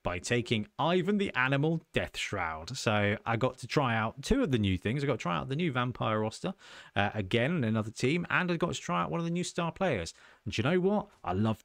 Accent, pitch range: British, 100-130 Hz